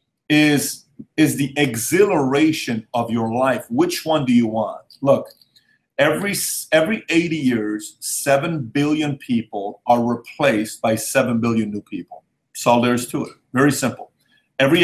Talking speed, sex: 140 wpm, male